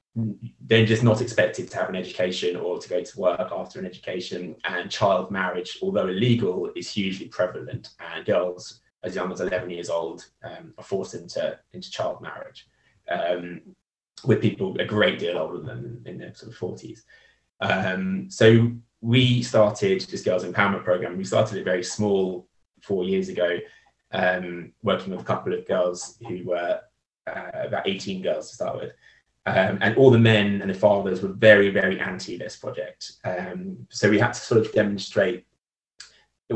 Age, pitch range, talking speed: 20-39, 90-115 Hz, 175 wpm